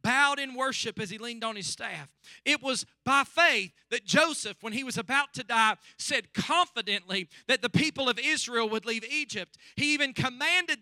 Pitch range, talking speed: 235-290 Hz, 190 wpm